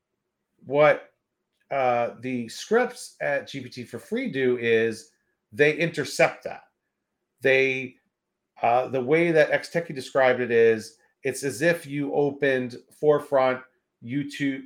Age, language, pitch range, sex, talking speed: 40-59, English, 120-155 Hz, male, 120 wpm